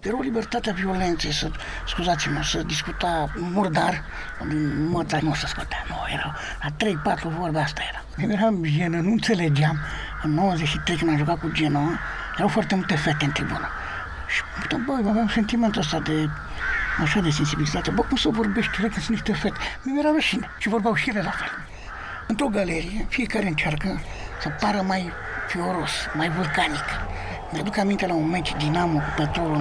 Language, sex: Romanian, male